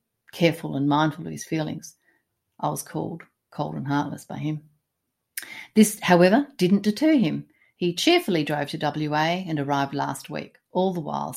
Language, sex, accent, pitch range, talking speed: English, female, Australian, 145-200 Hz, 165 wpm